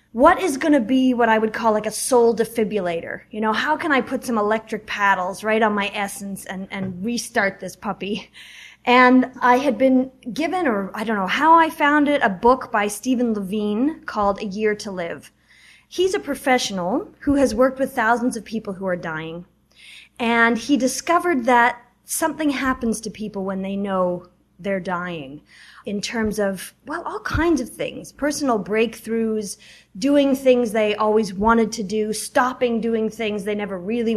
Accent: American